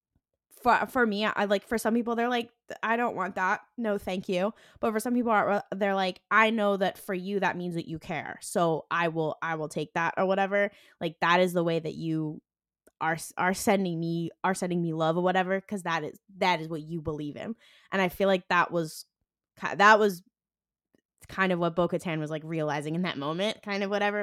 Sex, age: female, 10-29